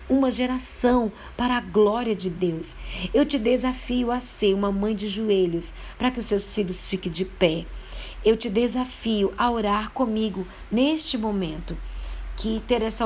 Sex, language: female, Portuguese